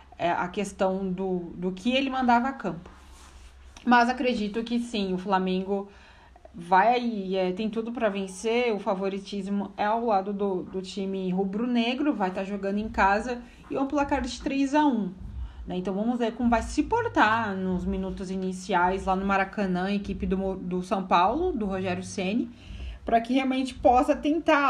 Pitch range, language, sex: 185-230 Hz, Portuguese, female